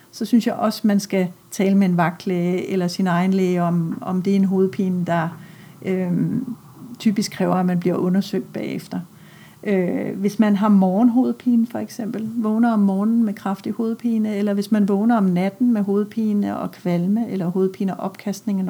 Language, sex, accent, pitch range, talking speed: Danish, female, native, 190-220 Hz, 175 wpm